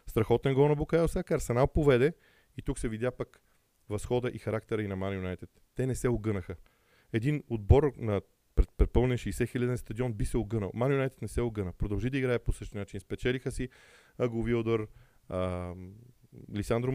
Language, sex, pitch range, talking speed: Bulgarian, male, 100-125 Hz, 165 wpm